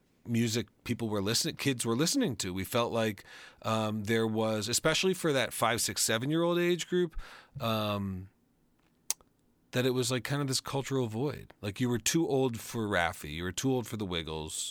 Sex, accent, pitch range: male, American, 100-130 Hz